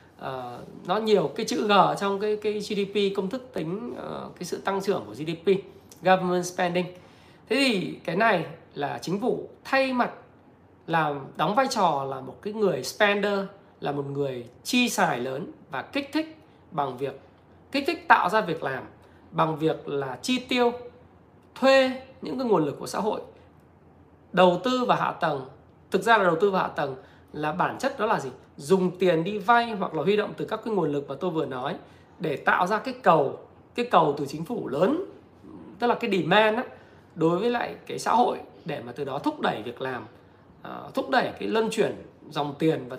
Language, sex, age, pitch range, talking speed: Vietnamese, male, 20-39, 150-215 Hz, 195 wpm